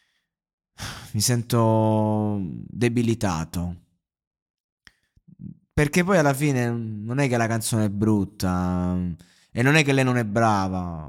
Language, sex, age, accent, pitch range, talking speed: Italian, male, 20-39, native, 105-150 Hz, 120 wpm